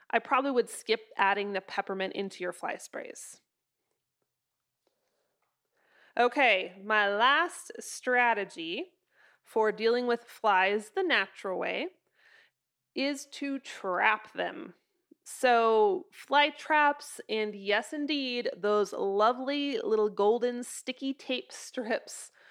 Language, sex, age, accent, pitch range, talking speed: English, female, 20-39, American, 215-290 Hz, 105 wpm